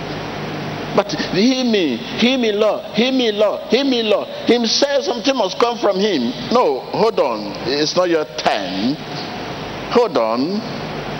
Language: English